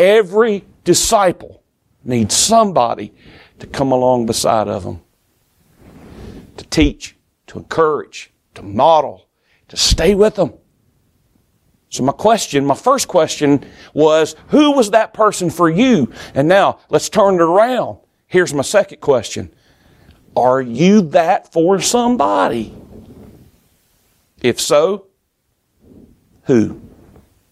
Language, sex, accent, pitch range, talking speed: English, male, American, 125-195 Hz, 110 wpm